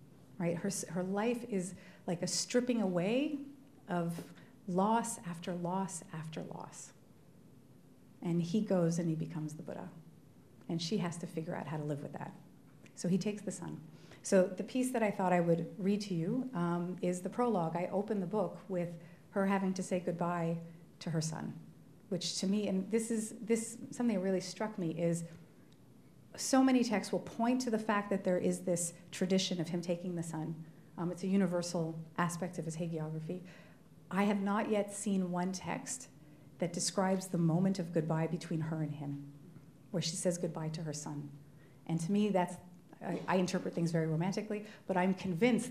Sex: female